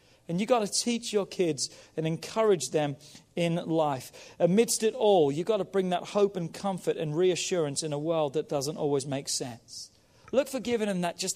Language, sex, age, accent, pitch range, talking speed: English, male, 40-59, British, 155-205 Hz, 205 wpm